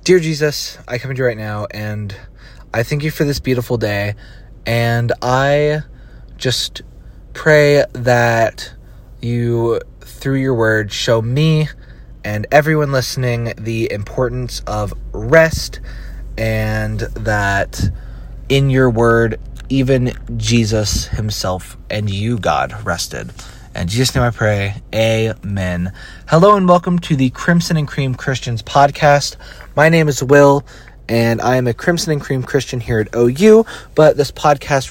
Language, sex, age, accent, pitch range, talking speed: English, male, 20-39, American, 105-140 Hz, 140 wpm